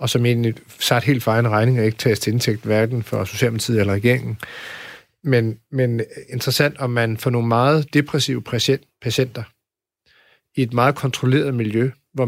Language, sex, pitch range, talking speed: Danish, male, 115-130 Hz, 165 wpm